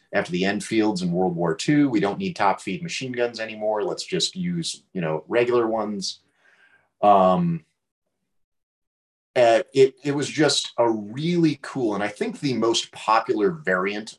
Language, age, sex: English, 30-49, male